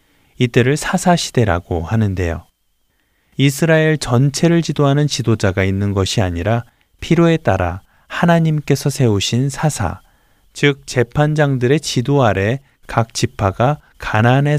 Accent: native